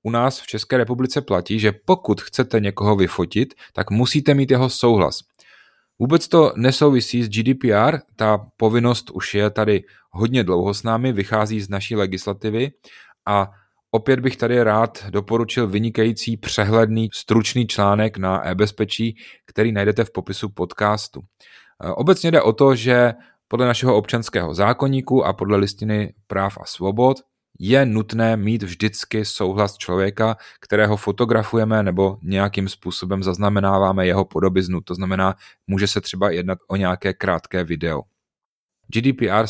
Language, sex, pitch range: Czech, male, 100-115 Hz